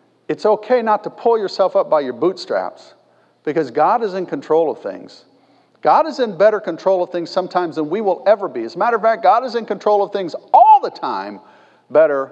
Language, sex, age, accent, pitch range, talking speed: English, male, 50-69, American, 150-245 Hz, 220 wpm